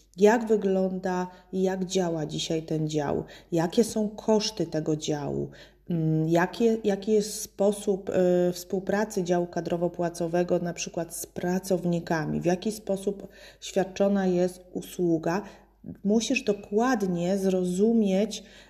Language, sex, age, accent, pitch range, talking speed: Polish, female, 30-49, native, 175-200 Hz, 105 wpm